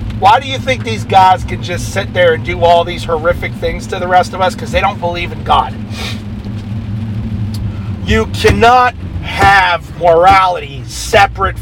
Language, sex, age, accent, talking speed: English, male, 40-59, American, 165 wpm